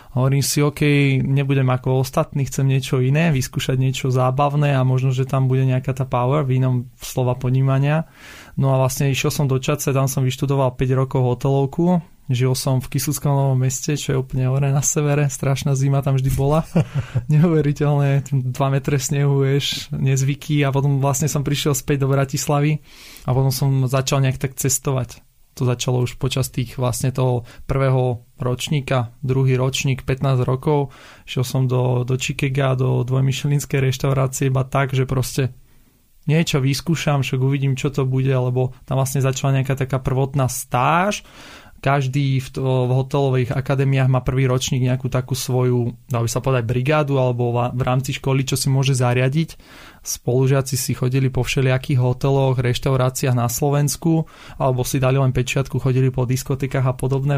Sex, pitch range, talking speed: male, 130-140 Hz, 165 wpm